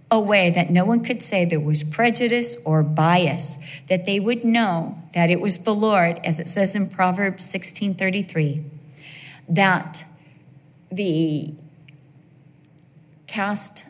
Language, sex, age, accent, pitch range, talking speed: English, female, 40-59, American, 155-200 Hz, 130 wpm